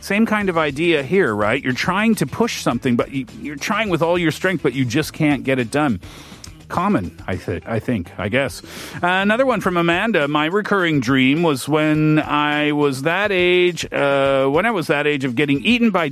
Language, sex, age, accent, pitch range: Korean, male, 40-59, American, 135-180 Hz